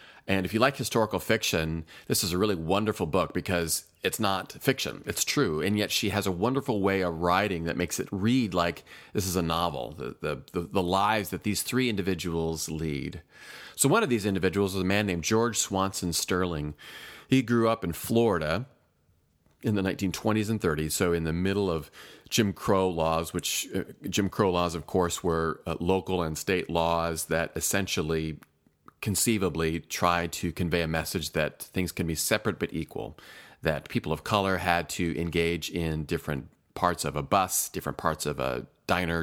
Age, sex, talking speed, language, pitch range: 40-59, male, 185 wpm, English, 85-105 Hz